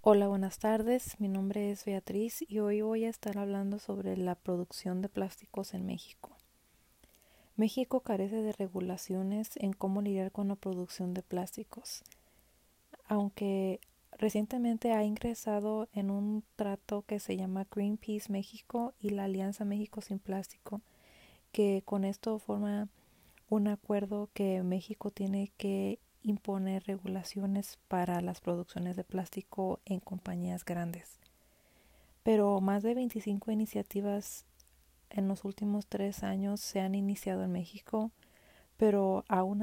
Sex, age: female, 30-49